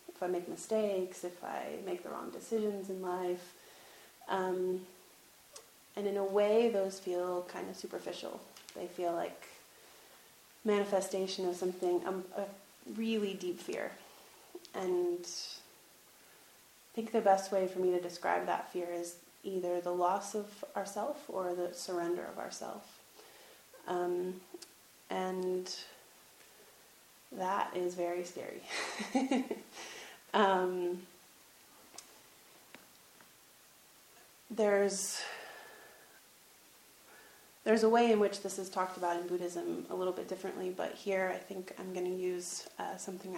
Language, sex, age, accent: English, female, 30-49, American